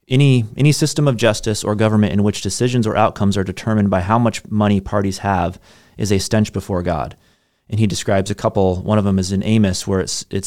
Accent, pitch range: American, 95-110 Hz